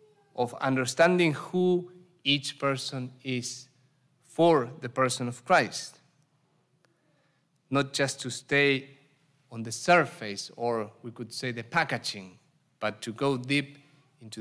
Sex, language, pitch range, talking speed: male, English, 130-160 Hz, 120 wpm